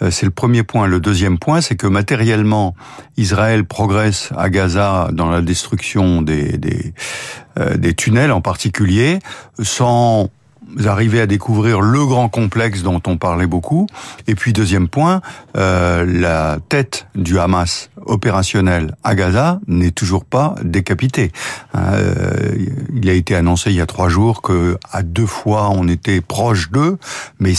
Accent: French